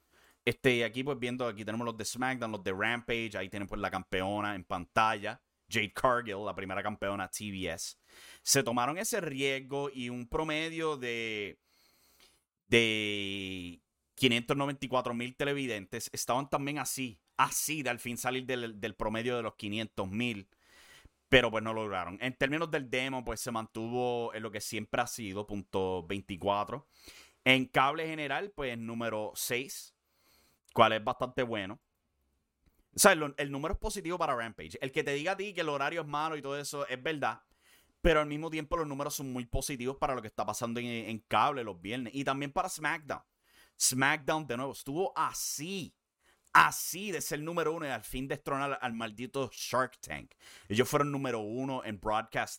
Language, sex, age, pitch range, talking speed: Spanish, male, 30-49, 105-140 Hz, 175 wpm